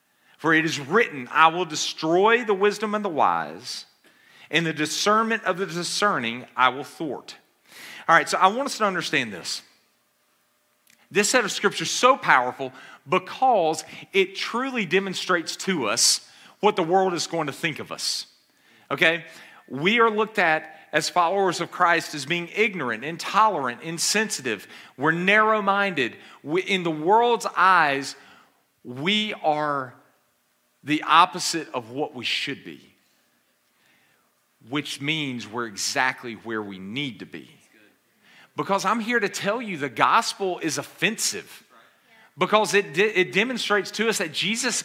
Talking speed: 145 wpm